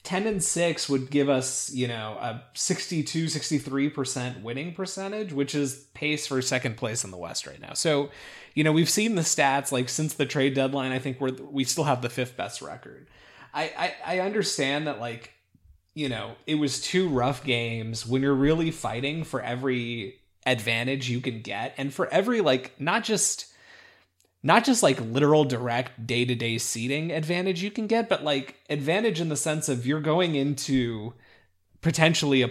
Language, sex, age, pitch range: English, male, 30-49, 120-150 Hz